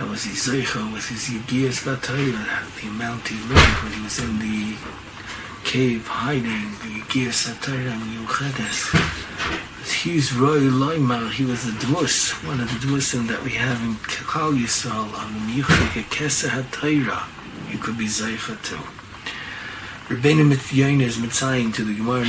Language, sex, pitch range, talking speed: English, male, 110-135 Hz, 155 wpm